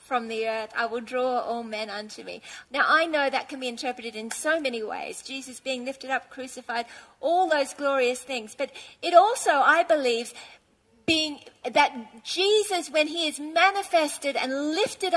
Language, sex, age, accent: English, female, 40-59, Australian